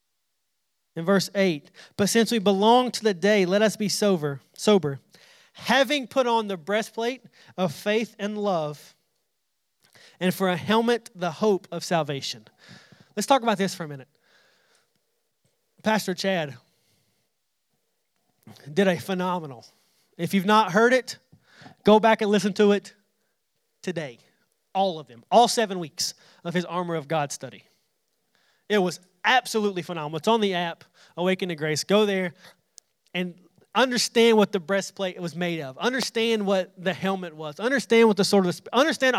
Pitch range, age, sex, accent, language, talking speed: 175-225 Hz, 30-49, male, American, English, 155 wpm